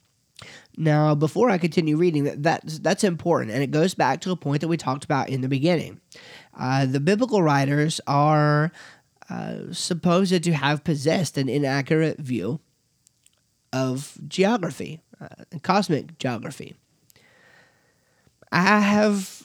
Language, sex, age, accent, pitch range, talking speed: English, male, 30-49, American, 140-180 Hz, 135 wpm